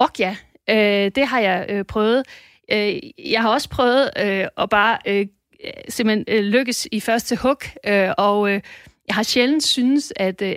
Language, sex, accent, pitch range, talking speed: Danish, female, native, 205-240 Hz, 135 wpm